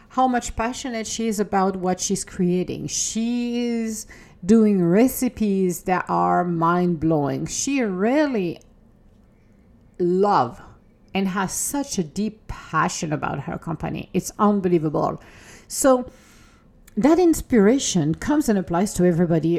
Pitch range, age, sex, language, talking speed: 175-235 Hz, 50-69, female, English, 115 wpm